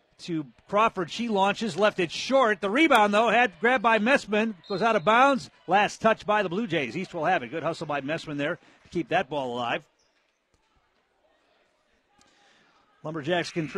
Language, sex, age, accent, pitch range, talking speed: English, male, 50-69, American, 145-195 Hz, 170 wpm